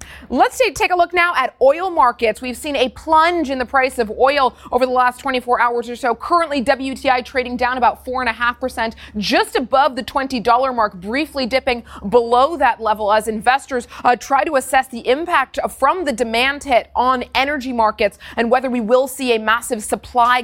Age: 30-49